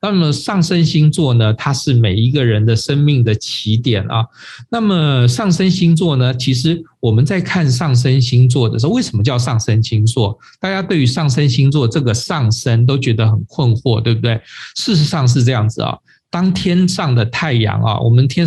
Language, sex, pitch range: Chinese, male, 115-140 Hz